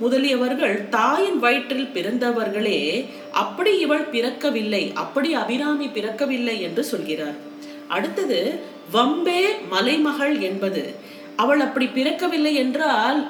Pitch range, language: 210-290 Hz, Tamil